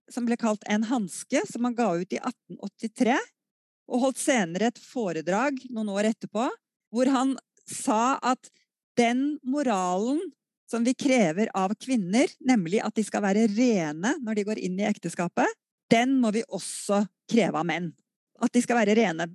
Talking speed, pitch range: 170 wpm, 195-255 Hz